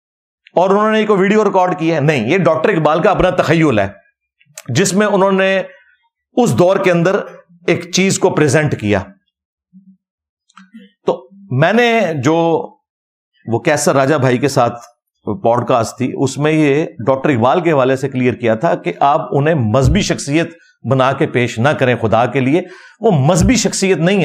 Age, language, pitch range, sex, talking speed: 50-69, Urdu, 145-205 Hz, male, 170 wpm